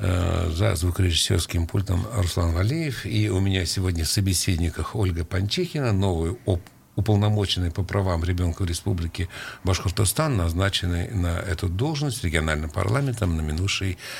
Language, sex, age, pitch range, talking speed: Russian, male, 60-79, 90-110 Hz, 125 wpm